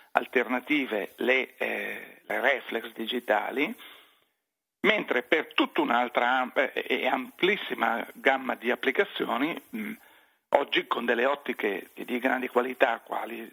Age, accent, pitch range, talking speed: 50-69, native, 120-140 Hz, 100 wpm